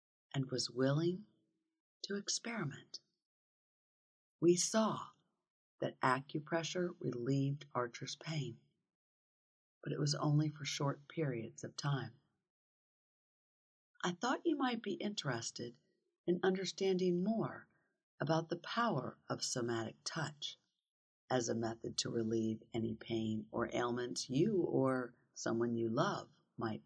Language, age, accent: English, 50-69, American